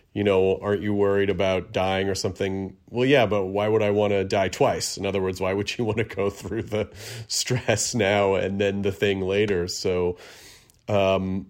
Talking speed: 205 wpm